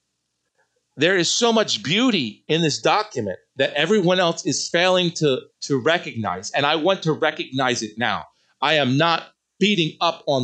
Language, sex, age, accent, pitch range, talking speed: English, male, 40-59, American, 140-200 Hz, 165 wpm